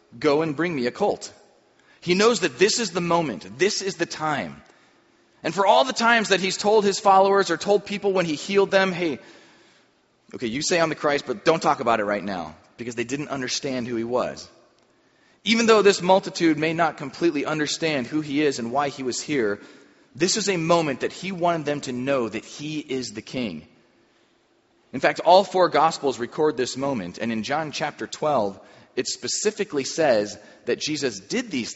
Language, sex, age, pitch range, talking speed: English, male, 30-49, 120-175 Hz, 200 wpm